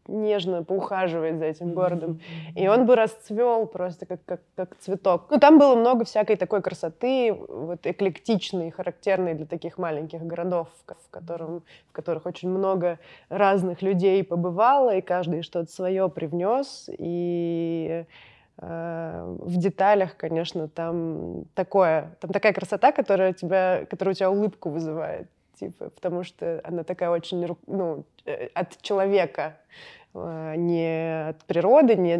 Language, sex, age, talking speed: Russian, female, 20-39, 125 wpm